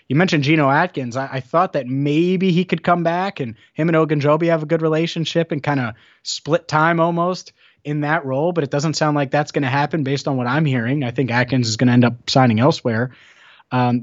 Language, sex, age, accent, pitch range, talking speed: English, male, 30-49, American, 120-150 Hz, 235 wpm